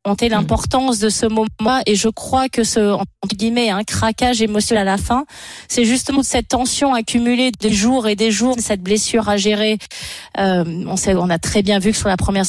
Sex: female